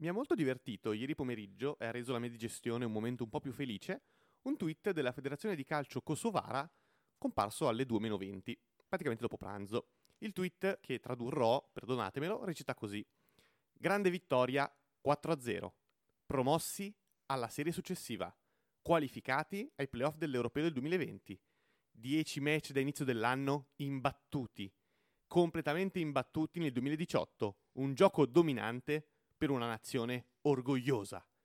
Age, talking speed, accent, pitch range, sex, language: 30-49, 130 wpm, native, 125-165 Hz, male, Italian